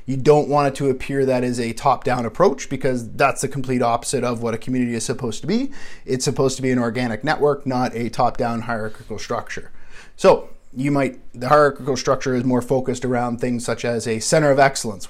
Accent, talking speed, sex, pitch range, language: American, 210 wpm, male, 125-145 Hz, English